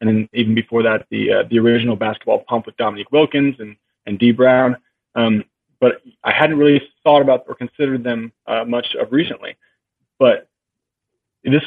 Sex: male